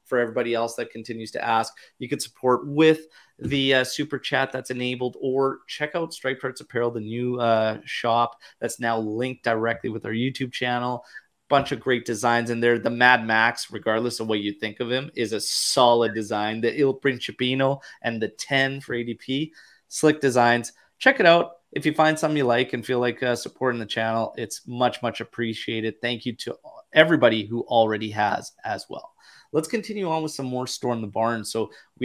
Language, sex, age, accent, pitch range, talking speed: English, male, 30-49, American, 115-135 Hz, 195 wpm